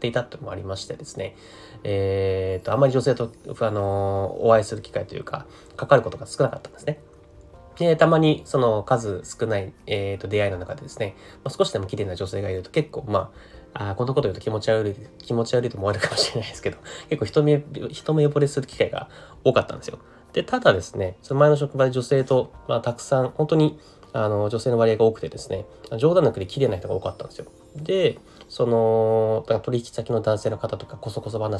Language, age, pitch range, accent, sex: Japanese, 20-39, 100-140 Hz, native, male